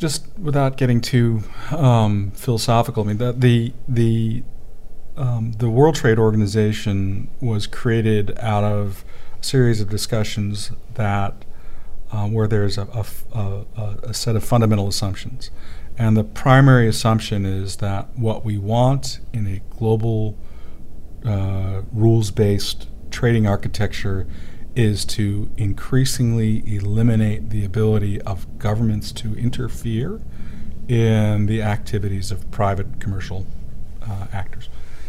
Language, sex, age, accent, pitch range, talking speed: English, male, 50-69, American, 100-115 Hz, 110 wpm